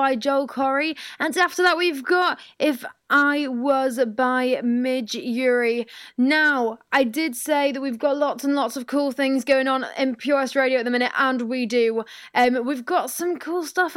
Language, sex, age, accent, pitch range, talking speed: English, female, 20-39, British, 260-315 Hz, 190 wpm